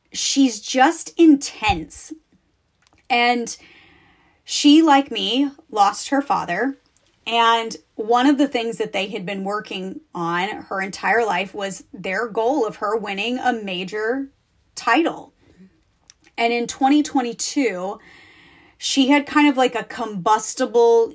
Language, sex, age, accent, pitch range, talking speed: English, female, 30-49, American, 195-250 Hz, 120 wpm